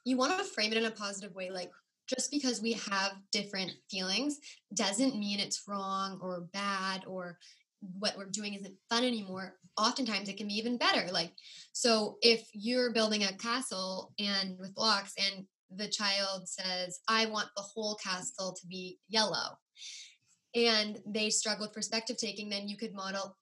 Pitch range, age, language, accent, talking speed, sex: 195-230 Hz, 10-29, English, American, 170 wpm, female